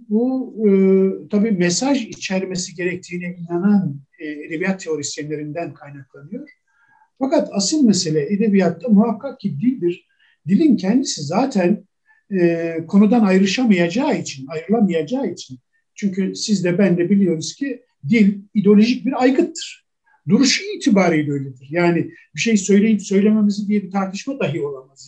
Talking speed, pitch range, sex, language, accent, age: 120 wpm, 170-255 Hz, male, Turkish, native, 60-79